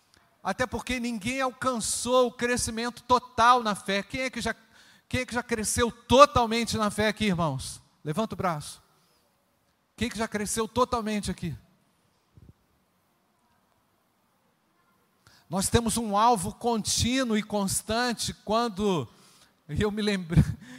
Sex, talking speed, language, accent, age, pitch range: male, 125 wpm, Portuguese, Brazilian, 40-59, 170-225 Hz